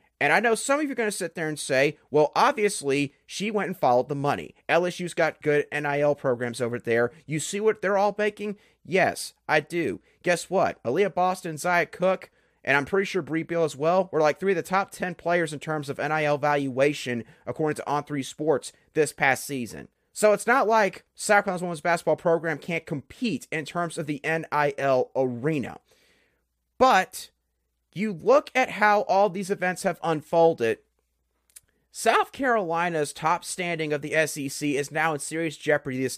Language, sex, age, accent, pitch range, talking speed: English, male, 30-49, American, 145-190 Hz, 180 wpm